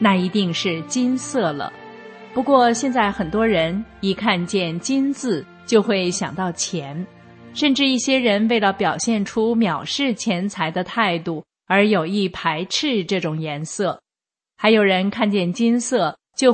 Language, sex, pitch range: Chinese, female, 180-230 Hz